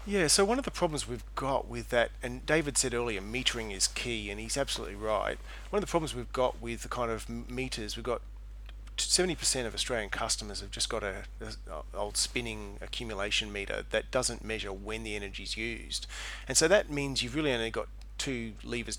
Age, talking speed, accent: 40-59, 210 wpm, Australian